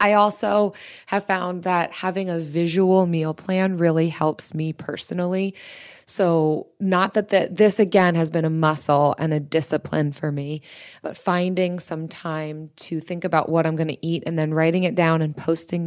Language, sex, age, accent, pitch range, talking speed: English, female, 20-39, American, 155-190 Hz, 180 wpm